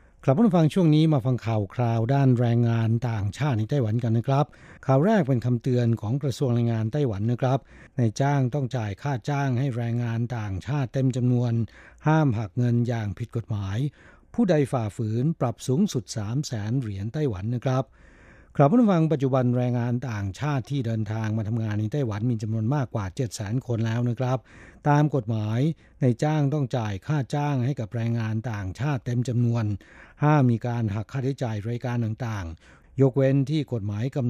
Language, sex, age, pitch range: Thai, male, 60-79, 115-140 Hz